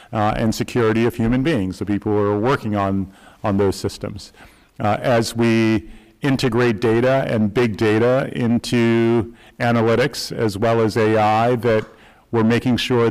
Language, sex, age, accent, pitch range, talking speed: English, male, 40-59, American, 110-120 Hz, 150 wpm